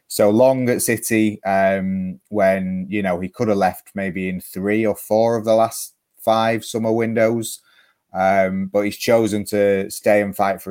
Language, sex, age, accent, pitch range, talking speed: English, male, 30-49, British, 95-110 Hz, 180 wpm